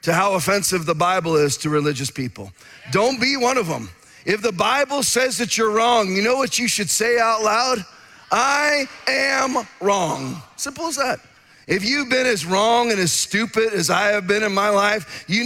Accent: American